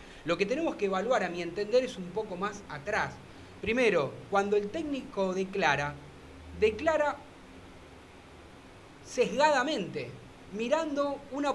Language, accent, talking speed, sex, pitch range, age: Spanish, Argentinian, 115 wpm, male, 160-230 Hz, 30-49